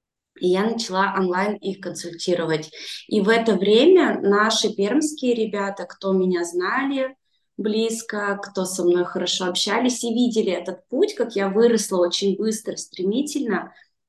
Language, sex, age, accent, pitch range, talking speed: Russian, female, 20-39, native, 195-235 Hz, 135 wpm